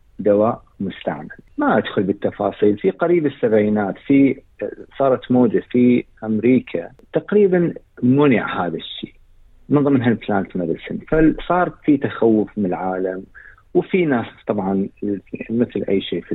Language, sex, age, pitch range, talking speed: Arabic, male, 50-69, 95-140 Hz, 115 wpm